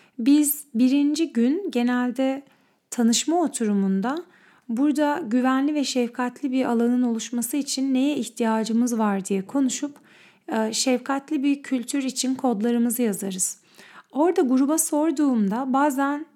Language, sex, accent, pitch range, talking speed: Turkish, female, native, 220-280 Hz, 105 wpm